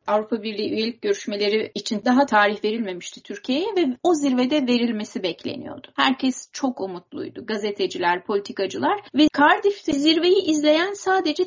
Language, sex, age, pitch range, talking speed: Turkish, female, 30-49, 215-315 Hz, 125 wpm